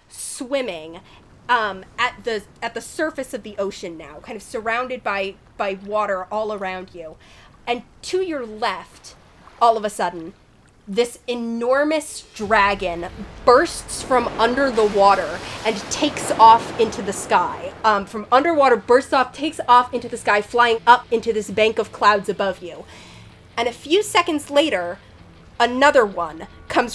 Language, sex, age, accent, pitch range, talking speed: English, female, 20-39, American, 200-245 Hz, 155 wpm